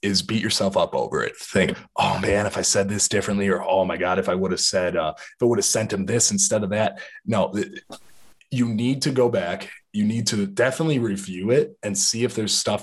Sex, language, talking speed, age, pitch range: male, English, 235 wpm, 20-39, 105-130 Hz